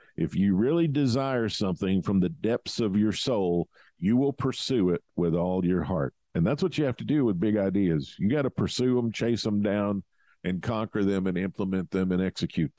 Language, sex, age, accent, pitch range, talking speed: English, male, 50-69, American, 105-170 Hz, 210 wpm